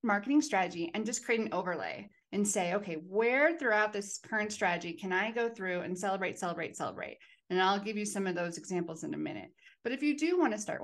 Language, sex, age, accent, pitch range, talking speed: English, female, 30-49, American, 175-220 Hz, 225 wpm